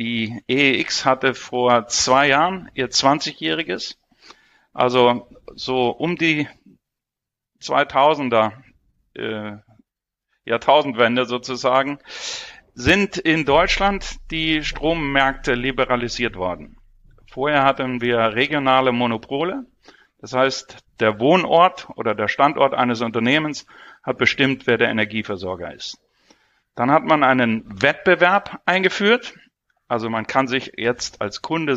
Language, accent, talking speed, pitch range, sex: German, German, 105 wpm, 125-165 Hz, male